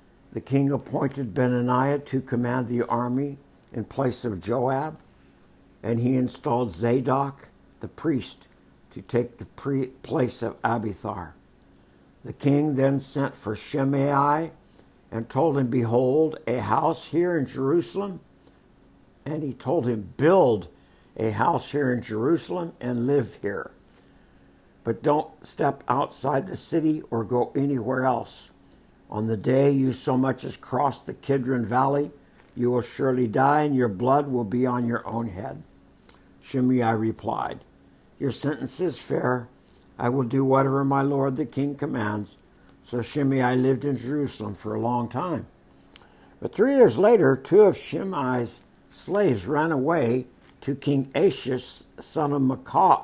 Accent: American